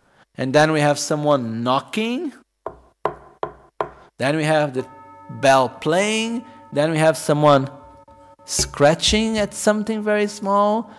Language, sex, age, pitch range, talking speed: Italian, male, 50-69, 130-200 Hz, 115 wpm